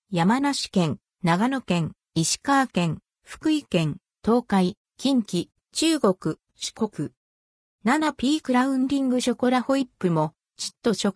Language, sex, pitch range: Japanese, female, 175-265 Hz